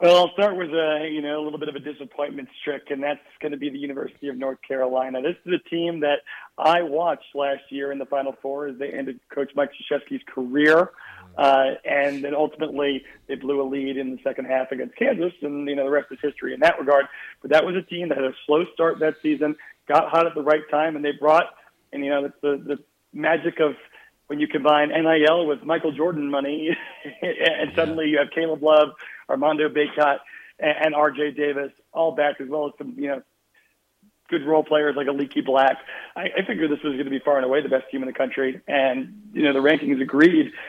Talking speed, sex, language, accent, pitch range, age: 225 wpm, male, English, American, 140-160 Hz, 40-59